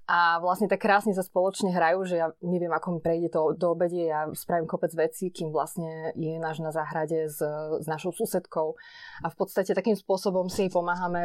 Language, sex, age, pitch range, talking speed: Slovak, female, 20-39, 170-200 Hz, 195 wpm